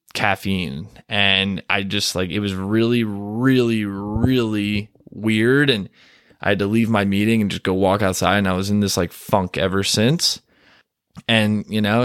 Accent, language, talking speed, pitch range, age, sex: American, English, 175 wpm, 105-120 Hz, 20-39, male